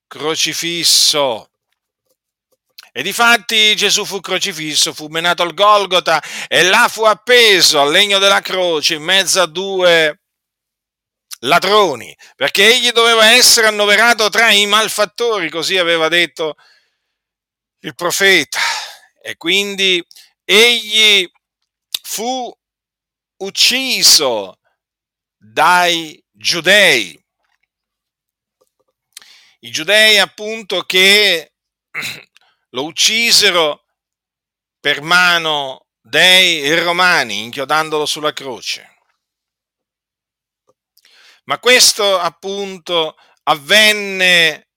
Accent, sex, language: native, male, Italian